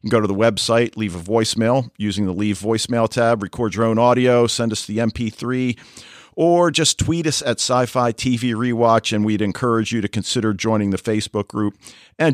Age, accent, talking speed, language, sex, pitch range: 50-69, American, 195 wpm, English, male, 110-140 Hz